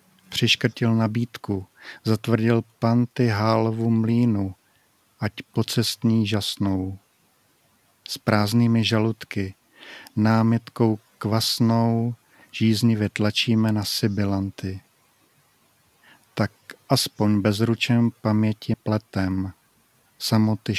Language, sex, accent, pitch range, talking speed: Czech, male, native, 105-115 Hz, 70 wpm